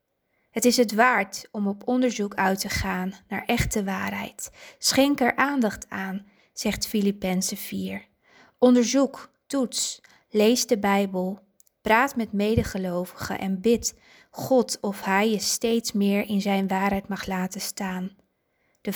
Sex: female